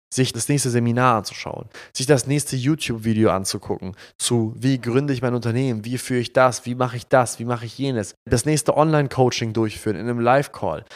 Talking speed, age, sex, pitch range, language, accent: 190 wpm, 20-39, male, 120-145 Hz, German, German